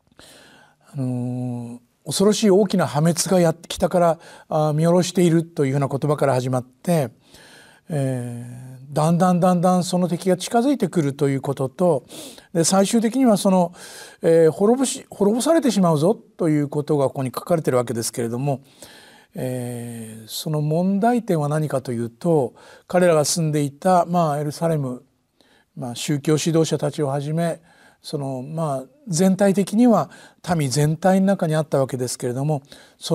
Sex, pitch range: male, 130-180 Hz